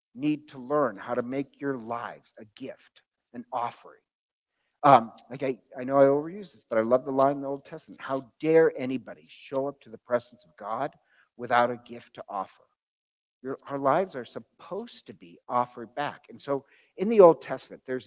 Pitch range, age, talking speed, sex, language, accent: 120-150 Hz, 50-69, 200 wpm, male, English, American